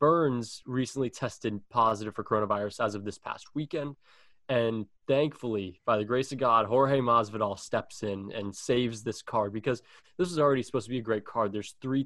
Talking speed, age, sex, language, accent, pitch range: 190 wpm, 20-39, male, English, American, 110-135 Hz